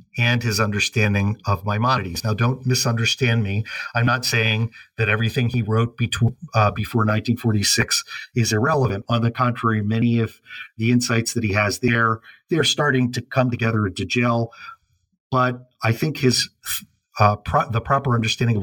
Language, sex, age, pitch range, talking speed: English, male, 50-69, 105-125 Hz, 165 wpm